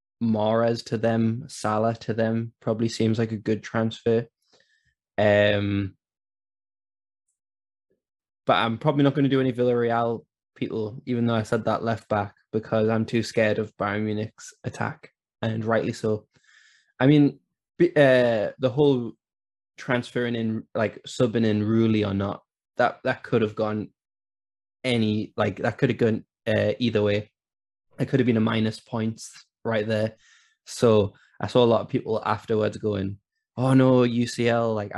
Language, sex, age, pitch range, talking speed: English, male, 20-39, 105-125 Hz, 150 wpm